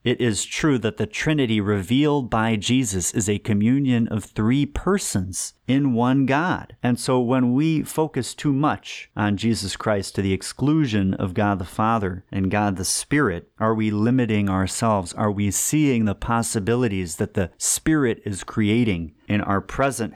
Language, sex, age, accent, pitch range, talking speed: English, male, 40-59, American, 100-125 Hz, 165 wpm